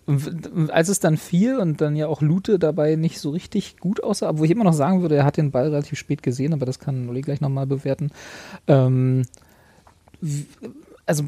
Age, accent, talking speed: 30-49, German, 195 wpm